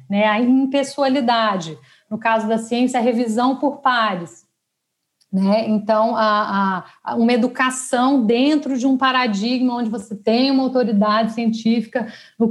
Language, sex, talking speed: Portuguese, female, 135 wpm